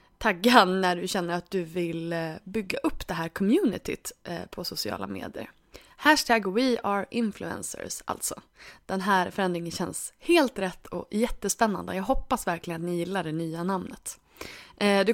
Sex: female